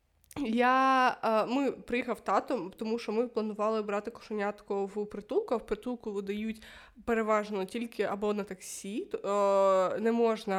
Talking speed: 130 wpm